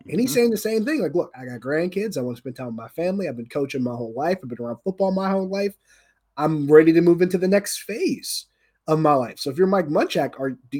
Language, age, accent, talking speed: English, 30-49, American, 270 wpm